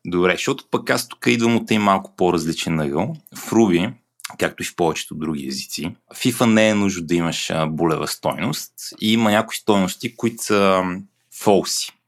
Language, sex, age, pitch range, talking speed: Bulgarian, male, 30-49, 90-110 Hz, 170 wpm